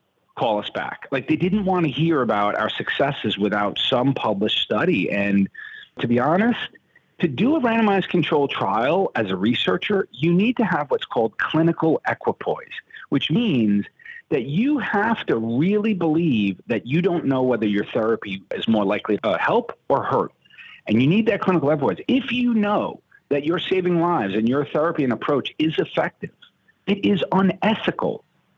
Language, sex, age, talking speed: English, male, 40-59, 170 wpm